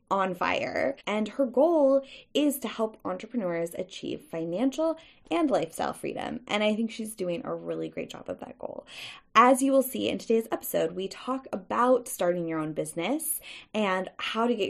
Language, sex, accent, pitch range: English, female, American, 180-255 Hz